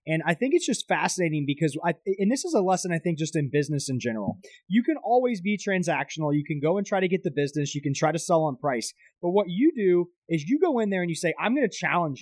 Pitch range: 145-190 Hz